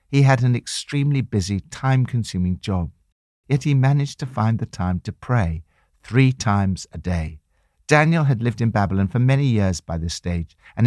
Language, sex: English, male